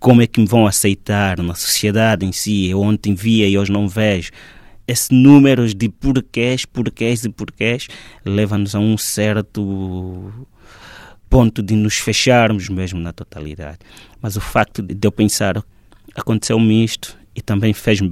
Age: 20-39